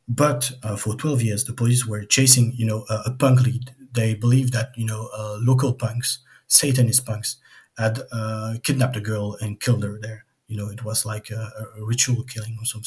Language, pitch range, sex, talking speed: English, 110-125 Hz, male, 210 wpm